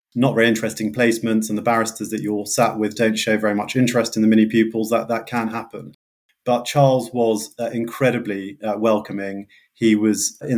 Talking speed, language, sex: 195 wpm, English, male